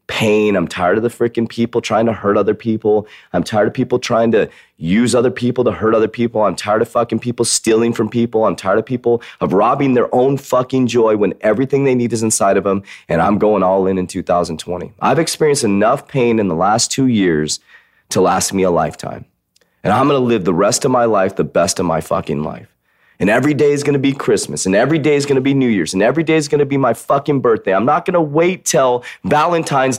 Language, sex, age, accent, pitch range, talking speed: English, male, 30-49, American, 110-140 Hz, 245 wpm